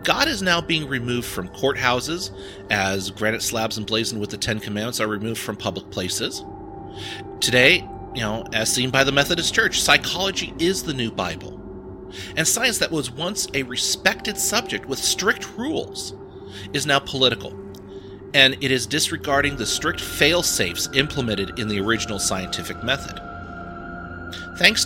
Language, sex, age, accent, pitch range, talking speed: English, male, 40-59, American, 95-140 Hz, 150 wpm